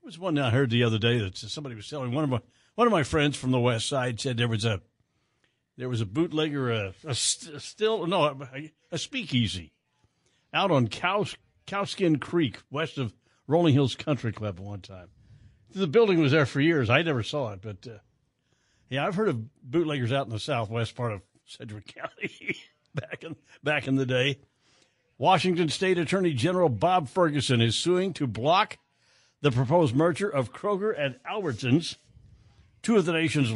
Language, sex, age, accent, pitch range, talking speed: English, male, 60-79, American, 120-165 Hz, 190 wpm